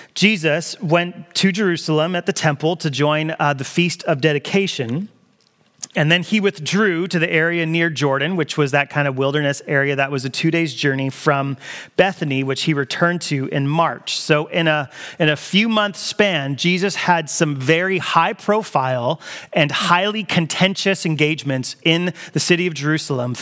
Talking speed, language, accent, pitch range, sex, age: 170 wpm, English, American, 150-185 Hz, male, 30-49